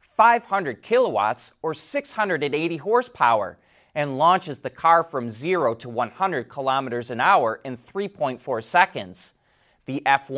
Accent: American